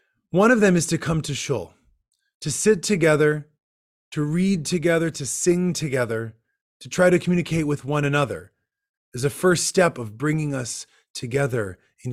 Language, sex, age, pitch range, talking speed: English, male, 30-49, 120-165 Hz, 165 wpm